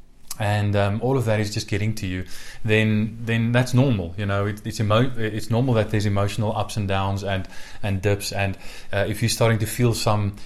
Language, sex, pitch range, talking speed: English, male, 105-120 Hz, 220 wpm